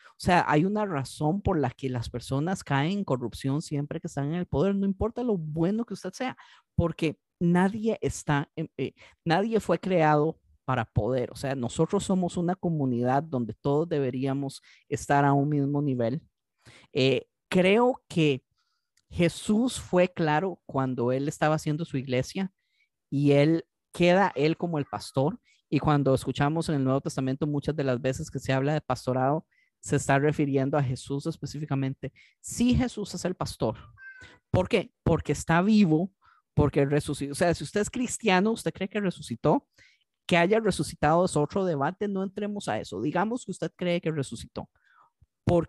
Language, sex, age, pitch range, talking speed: Spanish, male, 40-59, 140-185 Hz, 170 wpm